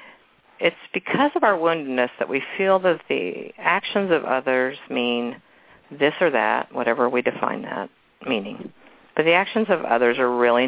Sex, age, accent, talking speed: female, 50-69, American, 165 wpm